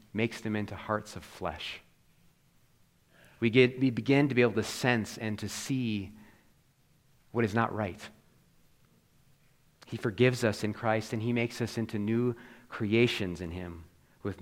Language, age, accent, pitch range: English, 30-49, American, 105-130 Hz